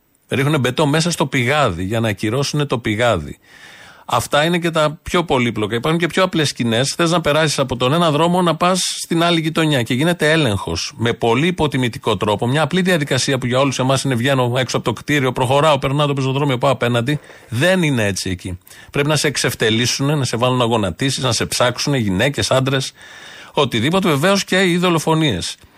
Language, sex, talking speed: Greek, male, 190 wpm